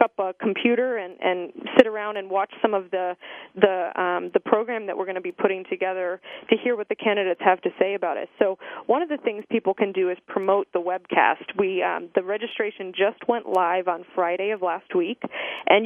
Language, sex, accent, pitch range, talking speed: English, female, American, 185-235 Hz, 220 wpm